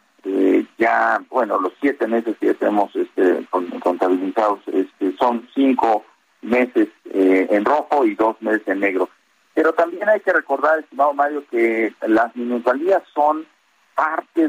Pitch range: 115-150 Hz